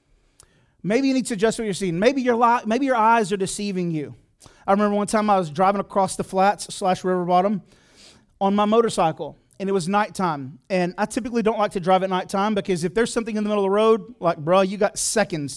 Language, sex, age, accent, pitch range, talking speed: English, male, 30-49, American, 170-220 Hz, 235 wpm